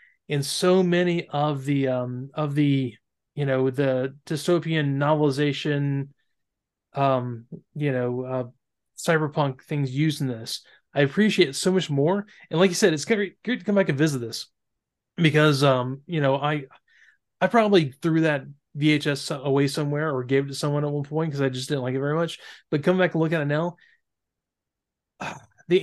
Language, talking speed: English, 180 wpm